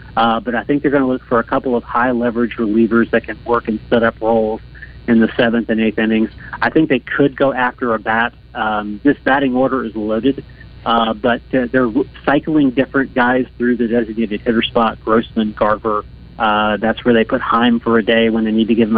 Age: 30-49